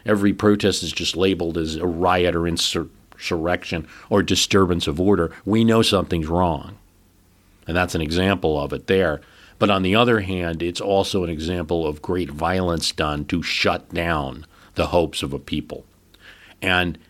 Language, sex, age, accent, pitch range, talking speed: English, male, 50-69, American, 80-100 Hz, 165 wpm